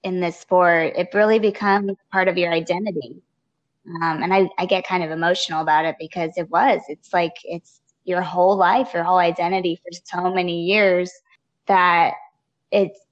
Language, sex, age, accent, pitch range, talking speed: English, female, 20-39, American, 165-200 Hz, 175 wpm